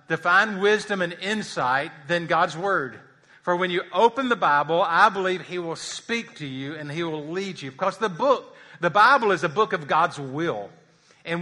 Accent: American